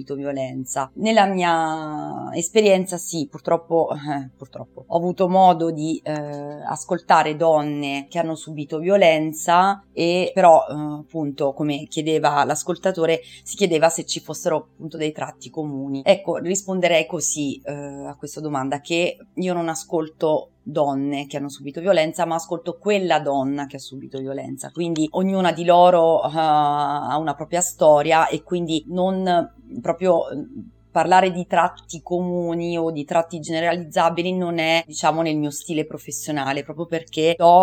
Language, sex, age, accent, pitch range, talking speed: Italian, female, 30-49, native, 150-170 Hz, 140 wpm